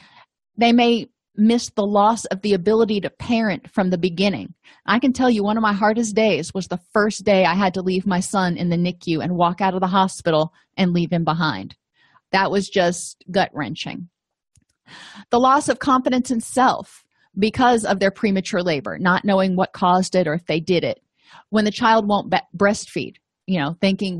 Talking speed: 200 wpm